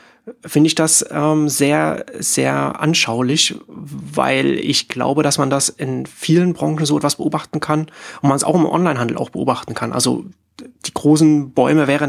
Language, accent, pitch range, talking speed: German, German, 125-150 Hz, 170 wpm